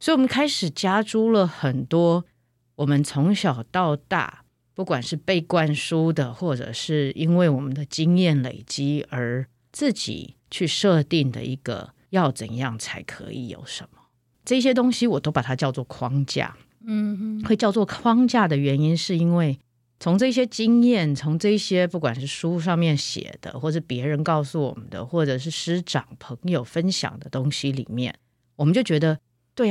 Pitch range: 130-180 Hz